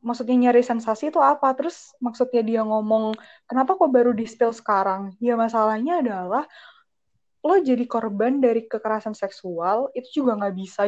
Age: 10-29